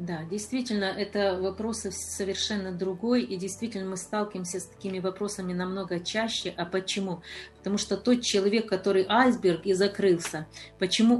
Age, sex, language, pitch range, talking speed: 40-59, female, Ukrainian, 190-240 Hz, 140 wpm